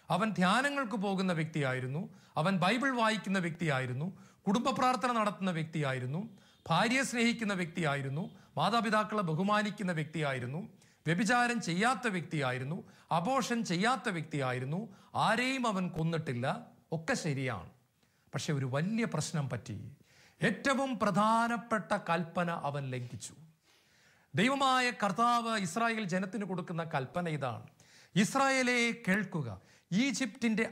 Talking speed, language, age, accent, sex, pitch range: 90 wpm, English, 40-59, Indian, male, 155-220 Hz